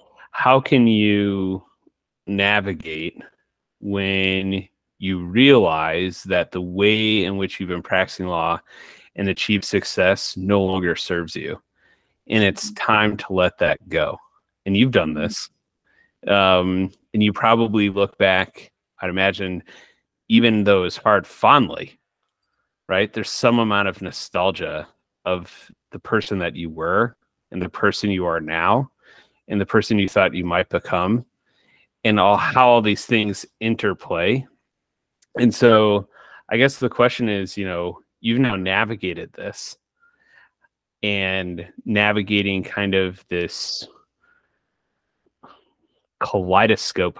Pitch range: 95-115 Hz